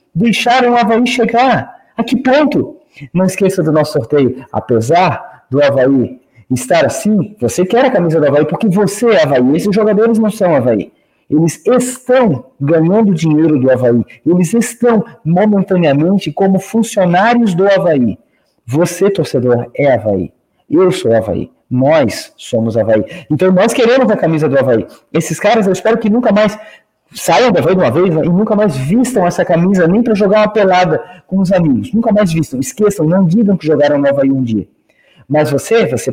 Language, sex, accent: Portuguese, male, Brazilian